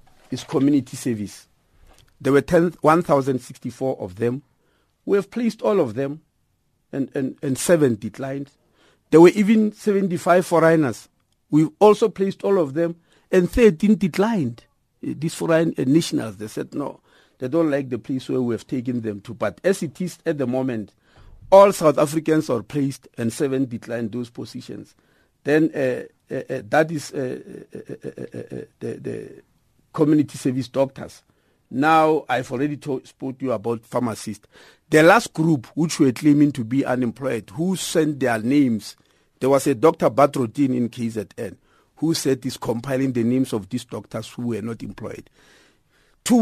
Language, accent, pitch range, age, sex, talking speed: English, South African, 125-160 Hz, 50-69, male, 165 wpm